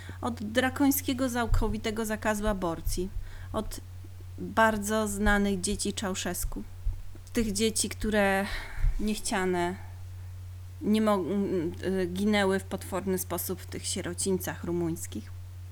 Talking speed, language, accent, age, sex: 85 wpm, Polish, native, 30-49, female